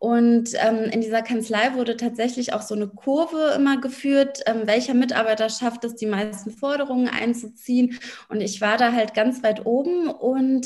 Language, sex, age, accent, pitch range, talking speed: German, female, 20-39, German, 220-265 Hz, 175 wpm